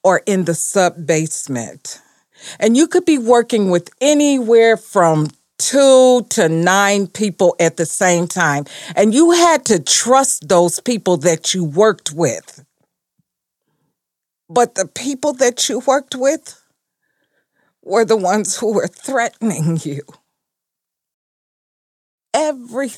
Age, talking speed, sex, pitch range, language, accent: 50-69, 120 wpm, female, 175-255 Hz, English, American